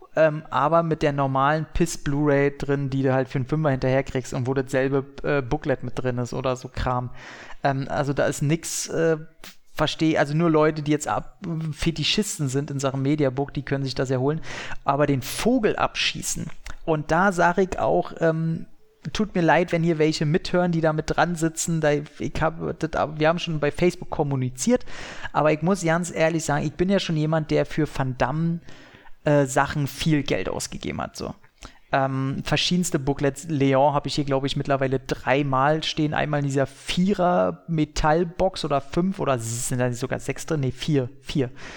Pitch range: 135-160 Hz